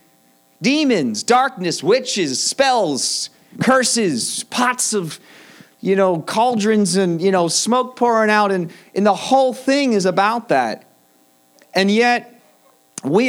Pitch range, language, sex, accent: 135-210 Hz, English, male, American